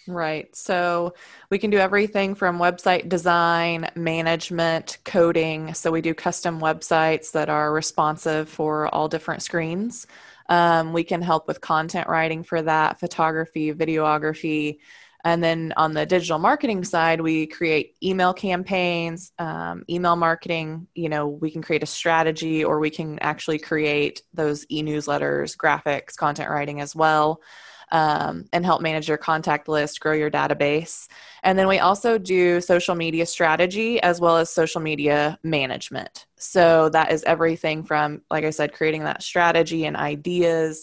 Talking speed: 155 wpm